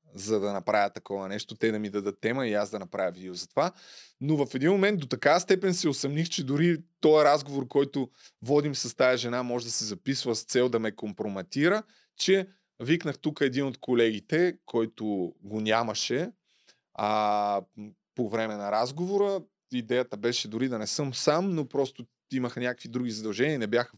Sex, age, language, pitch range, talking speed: male, 20-39, Bulgarian, 110-150 Hz, 185 wpm